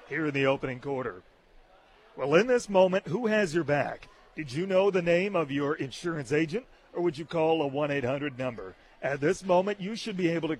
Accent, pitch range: American, 145-180 Hz